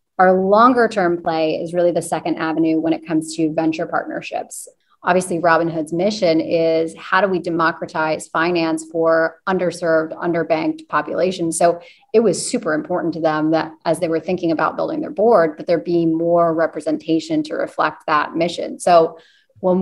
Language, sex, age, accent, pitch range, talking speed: English, female, 30-49, American, 160-190 Hz, 165 wpm